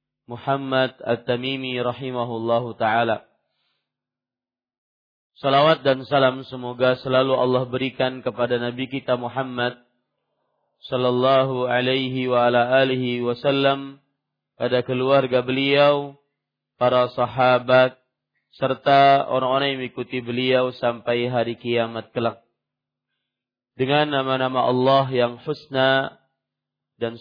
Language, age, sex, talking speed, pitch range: Malay, 40-59, male, 90 wpm, 125-135 Hz